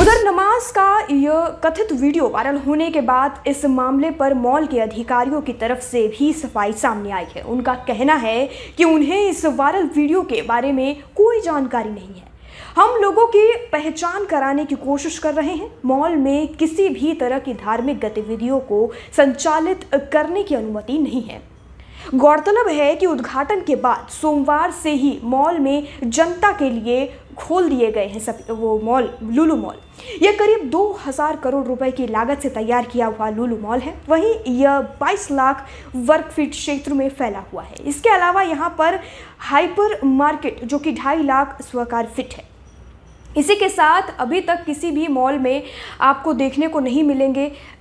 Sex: female